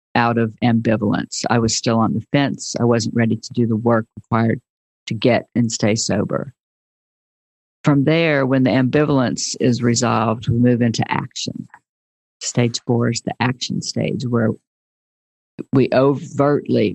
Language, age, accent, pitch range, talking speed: English, 50-69, American, 115-130 Hz, 150 wpm